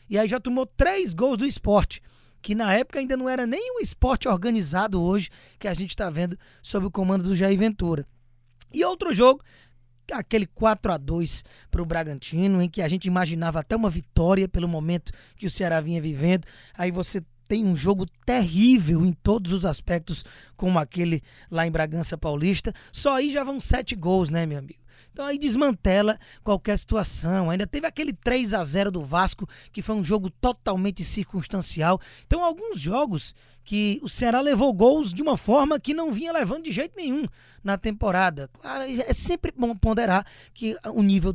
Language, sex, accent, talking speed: Portuguese, male, Brazilian, 175 wpm